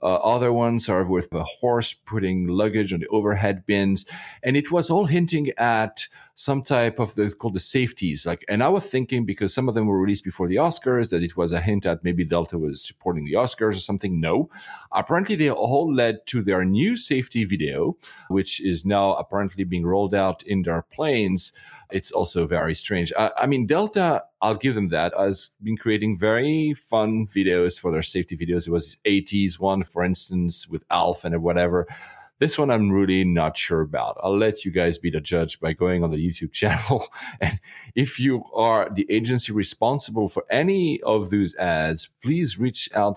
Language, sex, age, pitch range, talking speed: English, male, 40-59, 90-115 Hz, 195 wpm